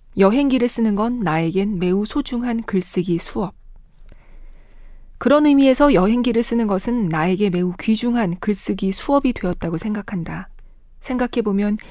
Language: Korean